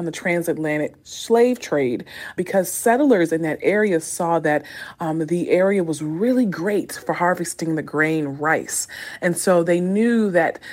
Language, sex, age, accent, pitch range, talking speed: English, female, 30-49, American, 155-195 Hz, 150 wpm